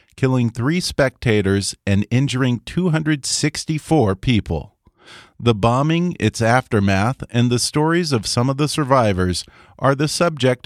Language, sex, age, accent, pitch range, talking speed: English, male, 40-59, American, 100-130 Hz, 125 wpm